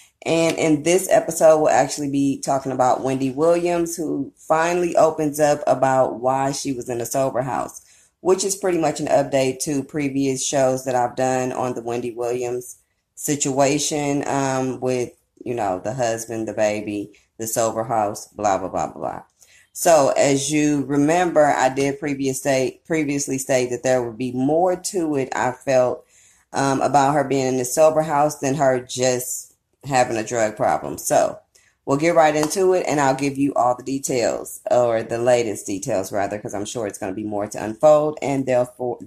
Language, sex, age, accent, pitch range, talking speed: English, female, 20-39, American, 125-145 Hz, 185 wpm